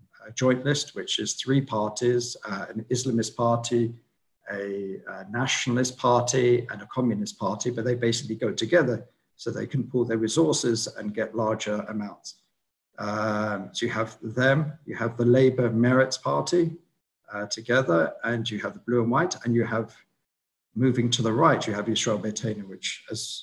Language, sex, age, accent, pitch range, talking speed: English, male, 50-69, British, 110-125 Hz, 170 wpm